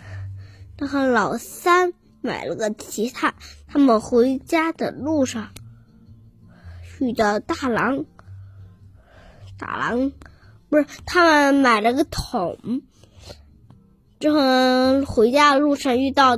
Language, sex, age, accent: Chinese, female, 10-29, native